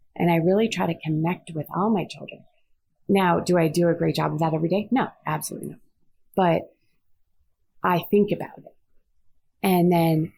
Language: English